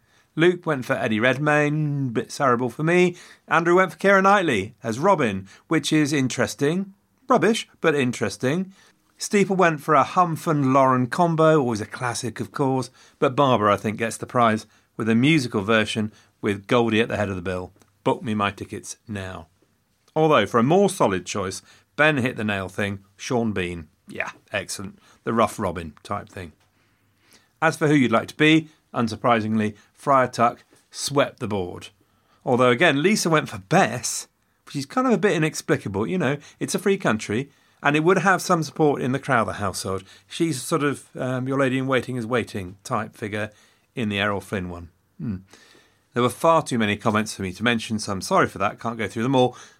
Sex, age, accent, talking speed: male, 40-59, British, 190 wpm